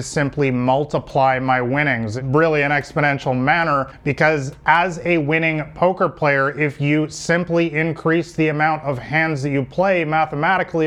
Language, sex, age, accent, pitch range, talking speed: English, male, 30-49, American, 145-170 Hz, 145 wpm